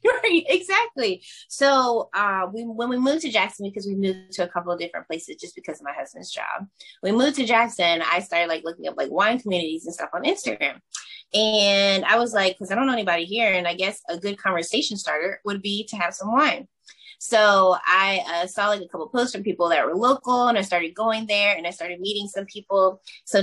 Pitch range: 175-225 Hz